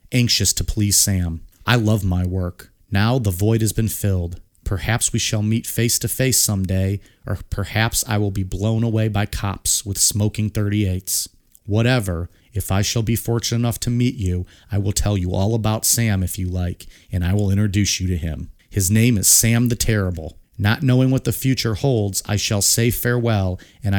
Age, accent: 40-59, American